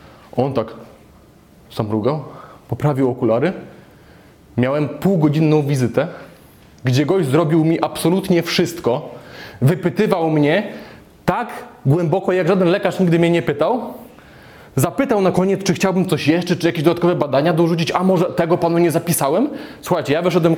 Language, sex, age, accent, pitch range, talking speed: Polish, male, 20-39, native, 145-180 Hz, 135 wpm